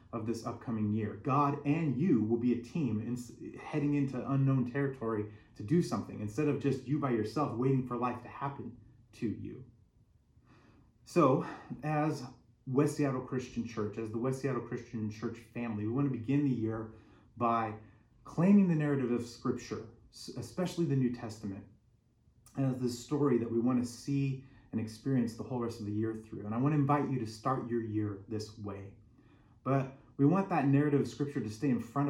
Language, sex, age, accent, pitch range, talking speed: English, male, 30-49, American, 110-135 Hz, 185 wpm